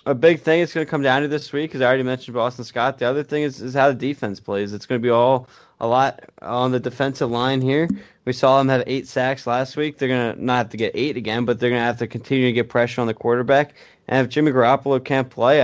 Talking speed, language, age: 285 wpm, English, 10-29